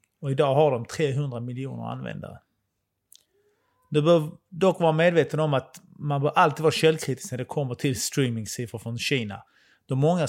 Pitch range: 125-155 Hz